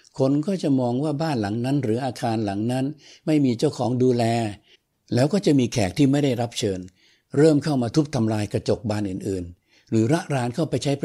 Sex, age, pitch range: male, 60-79, 115-145 Hz